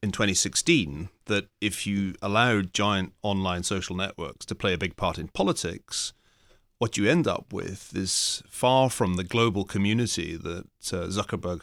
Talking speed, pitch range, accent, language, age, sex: 160 wpm, 95-120 Hz, British, English, 30-49, male